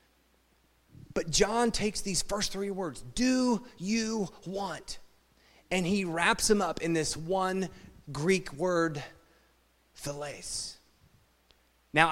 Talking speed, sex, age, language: 110 wpm, male, 30-49, English